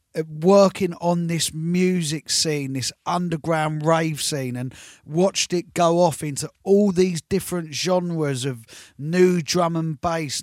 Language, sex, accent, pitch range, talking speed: English, male, British, 165-205 Hz, 145 wpm